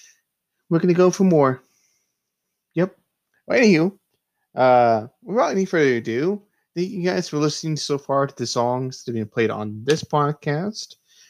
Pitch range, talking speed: 115-150 Hz, 155 wpm